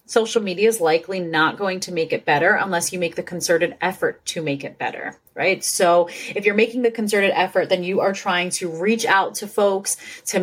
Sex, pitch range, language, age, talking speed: female, 175-220 Hz, English, 30-49, 220 wpm